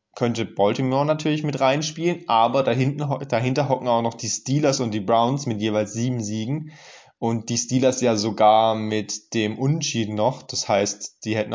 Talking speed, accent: 165 wpm, German